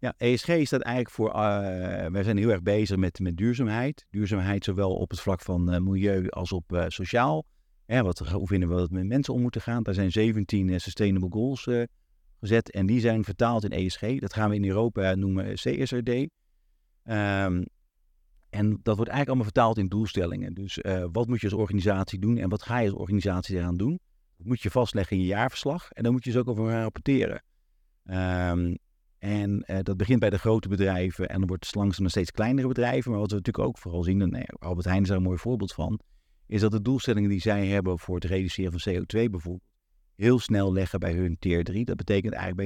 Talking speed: 225 wpm